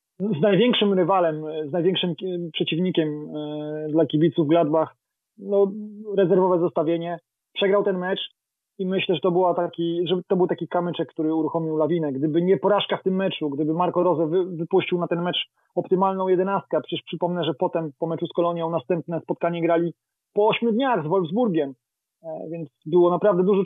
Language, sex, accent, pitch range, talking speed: Polish, male, native, 160-185 Hz, 160 wpm